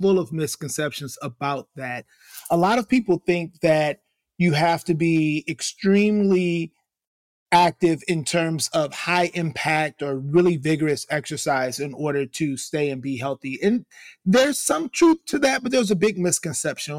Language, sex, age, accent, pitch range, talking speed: English, male, 30-49, American, 155-190 Hz, 155 wpm